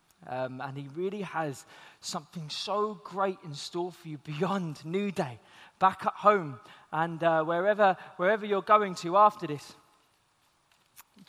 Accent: British